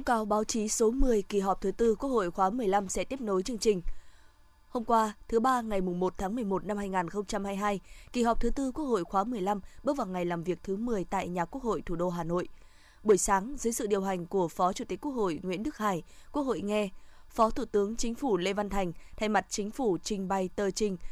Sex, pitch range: female, 190-230 Hz